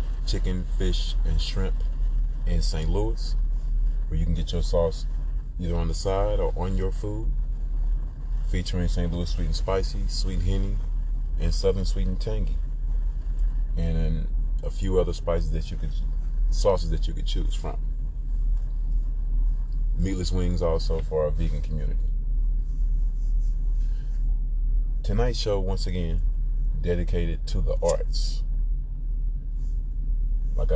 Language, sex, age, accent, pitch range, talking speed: English, male, 30-49, American, 70-80 Hz, 125 wpm